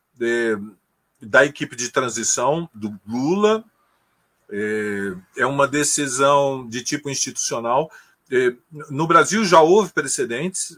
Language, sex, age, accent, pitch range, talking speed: Portuguese, male, 40-59, Brazilian, 110-155 Hz, 95 wpm